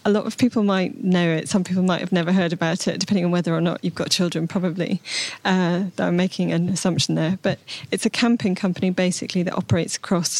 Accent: British